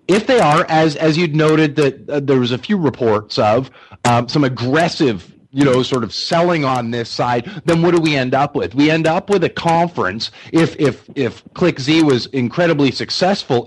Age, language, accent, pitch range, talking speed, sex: 30-49, English, American, 110-150 Hz, 205 wpm, male